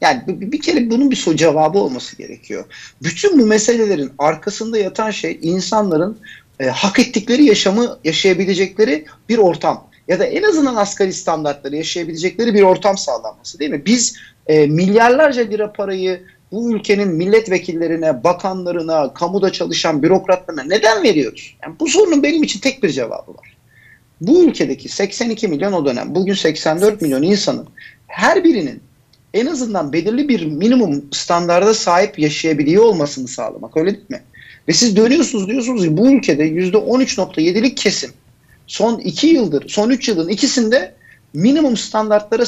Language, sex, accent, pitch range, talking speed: Turkish, male, native, 170-235 Hz, 145 wpm